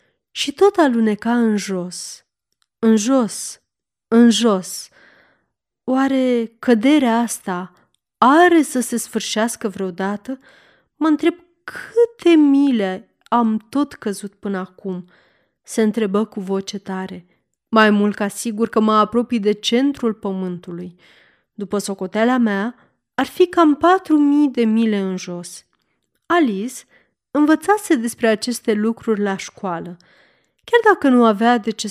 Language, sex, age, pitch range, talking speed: Romanian, female, 30-49, 200-265 Hz, 125 wpm